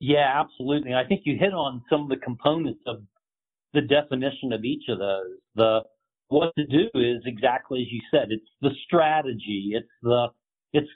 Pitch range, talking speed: 115-150 Hz, 180 wpm